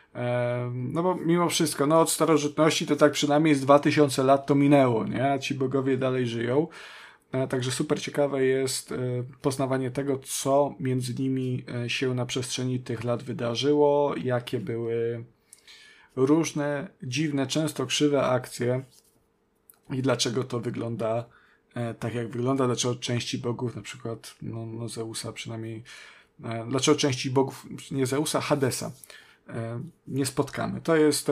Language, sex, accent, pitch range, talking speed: Polish, male, native, 125-145 Hz, 130 wpm